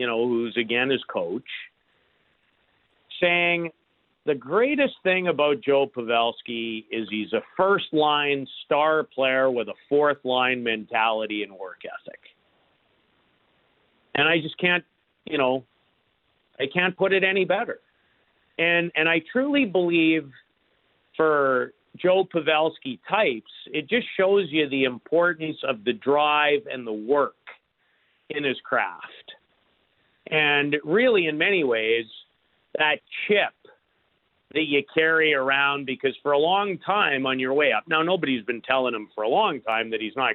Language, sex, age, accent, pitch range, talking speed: English, male, 50-69, American, 120-165 Hz, 145 wpm